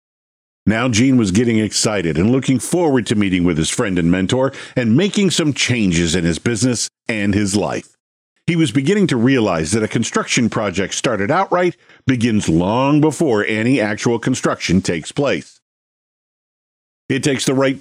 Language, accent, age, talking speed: English, American, 50-69, 160 wpm